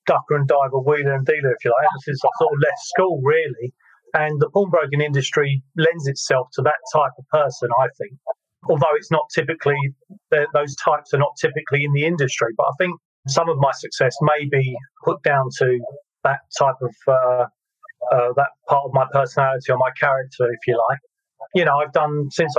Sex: male